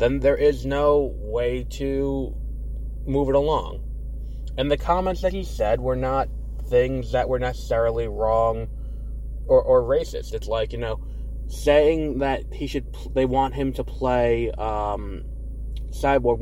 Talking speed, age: 150 wpm, 20-39